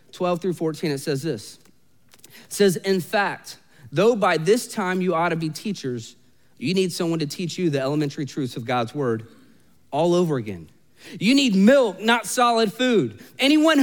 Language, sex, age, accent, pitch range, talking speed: English, male, 30-49, American, 170-245 Hz, 180 wpm